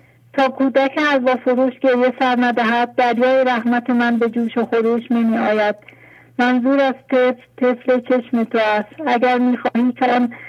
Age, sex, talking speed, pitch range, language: 50-69, female, 135 wpm, 235-255 Hz, English